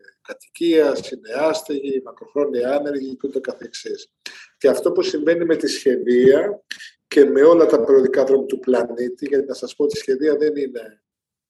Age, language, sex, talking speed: 50-69, Greek, male, 145 wpm